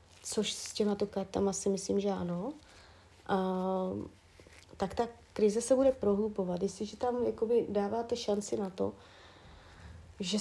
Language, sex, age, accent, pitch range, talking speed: Czech, female, 30-49, native, 190-230 Hz, 140 wpm